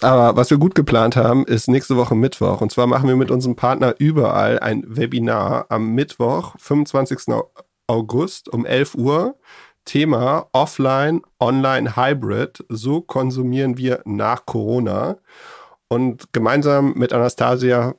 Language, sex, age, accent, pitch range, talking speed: German, male, 40-59, German, 110-135 Hz, 125 wpm